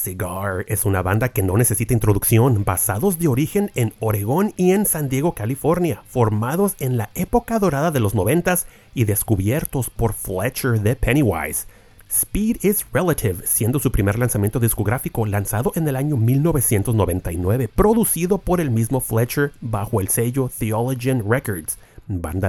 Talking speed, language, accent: 150 wpm, Spanish, Mexican